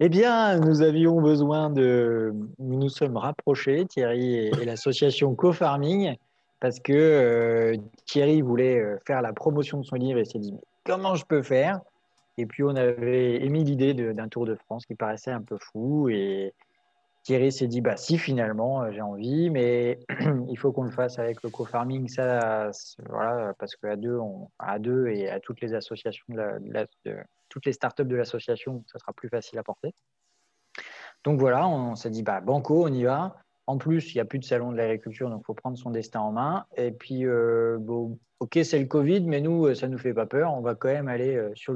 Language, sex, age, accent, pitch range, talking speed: French, male, 20-39, French, 115-145 Hz, 205 wpm